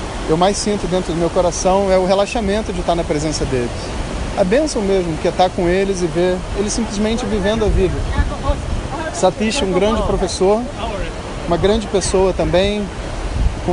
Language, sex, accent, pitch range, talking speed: Portuguese, male, Brazilian, 145-200 Hz, 170 wpm